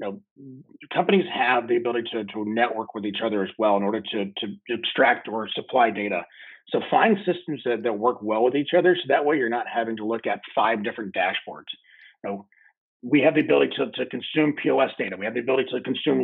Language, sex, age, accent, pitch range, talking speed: English, male, 30-49, American, 115-170 Hz, 225 wpm